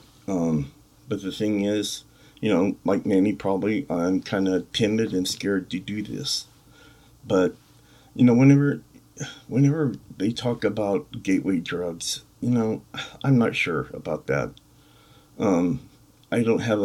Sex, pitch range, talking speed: male, 95-120 Hz, 145 wpm